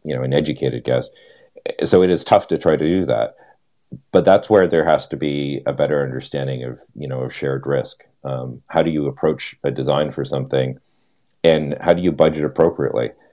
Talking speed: 205 wpm